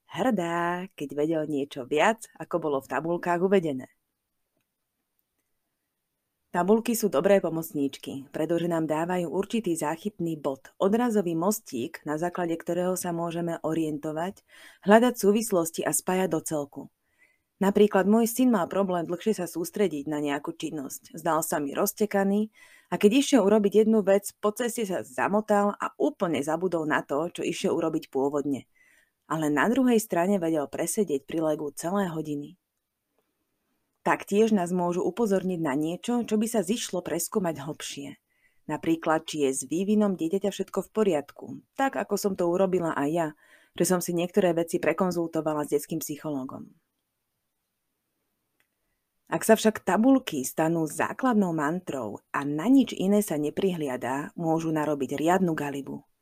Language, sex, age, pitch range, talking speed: Slovak, female, 30-49, 155-205 Hz, 140 wpm